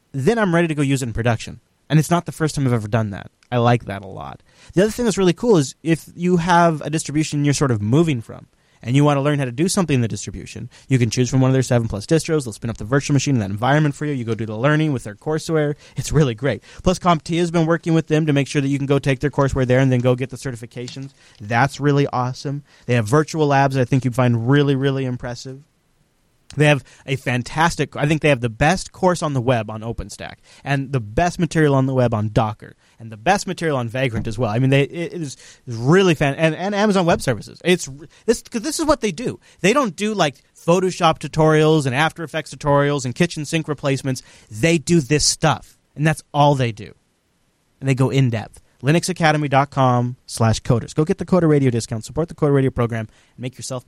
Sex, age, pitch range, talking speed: male, 20-39, 125-160 Hz, 250 wpm